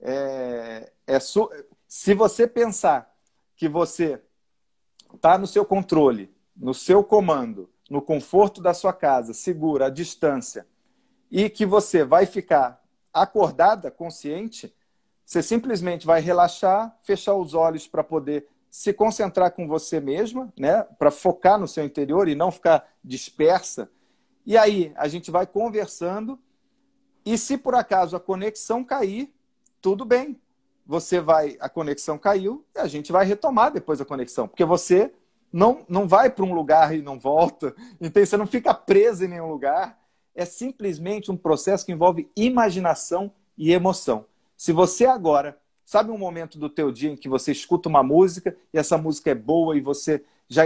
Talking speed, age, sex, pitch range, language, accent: 155 wpm, 50-69, male, 155-210 Hz, Portuguese, Brazilian